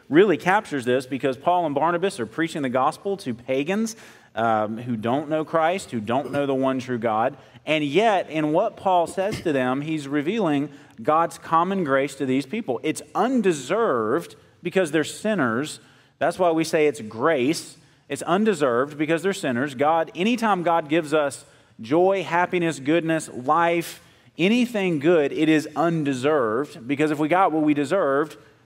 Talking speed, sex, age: 165 wpm, male, 30-49